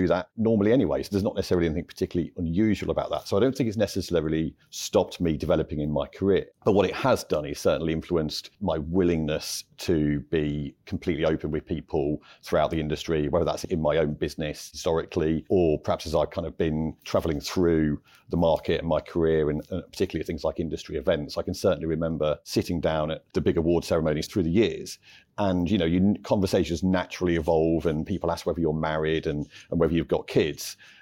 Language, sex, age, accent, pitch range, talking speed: English, male, 40-59, British, 80-90 Hz, 200 wpm